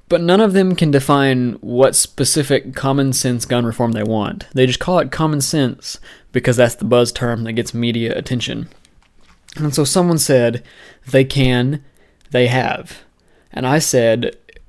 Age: 20-39